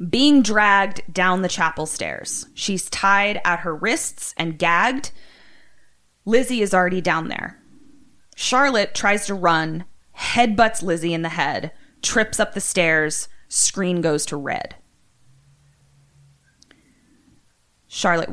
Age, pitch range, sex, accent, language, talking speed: 20-39, 160-205 Hz, female, American, English, 120 wpm